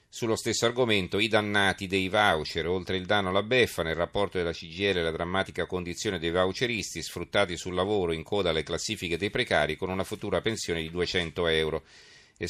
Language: Italian